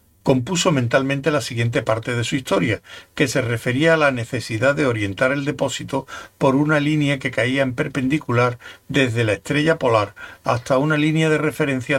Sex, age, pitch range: male, 60-79, 105-145 Hz